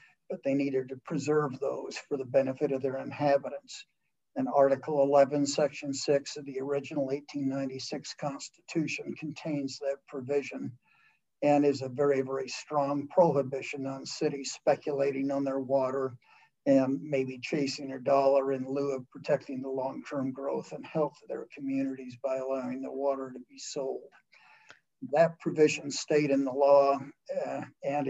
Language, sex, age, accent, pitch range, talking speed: English, male, 60-79, American, 135-150 Hz, 150 wpm